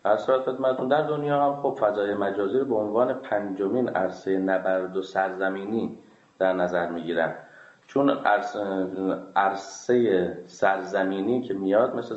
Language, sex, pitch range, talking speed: Persian, male, 95-125 Hz, 115 wpm